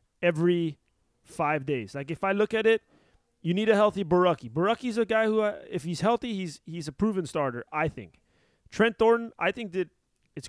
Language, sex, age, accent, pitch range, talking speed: English, male, 30-49, American, 140-180 Hz, 200 wpm